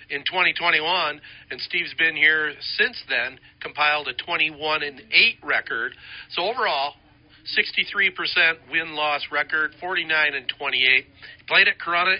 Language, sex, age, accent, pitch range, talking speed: English, male, 40-59, American, 140-165 Hz, 125 wpm